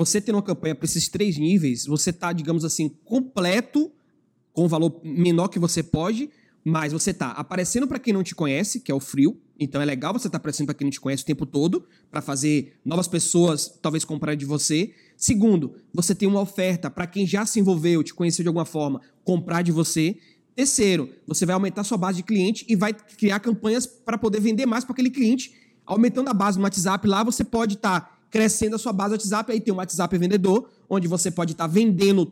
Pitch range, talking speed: 165-220 Hz, 225 wpm